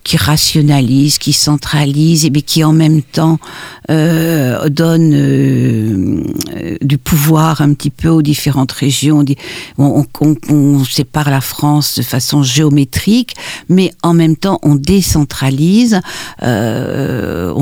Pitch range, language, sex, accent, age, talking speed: 130-165 Hz, French, female, French, 60-79, 125 wpm